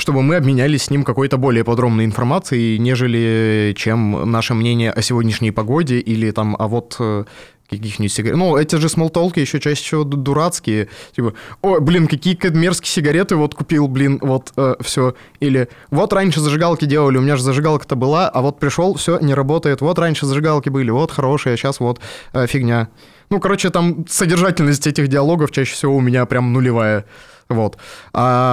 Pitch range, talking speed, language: 115-150 Hz, 175 wpm, Russian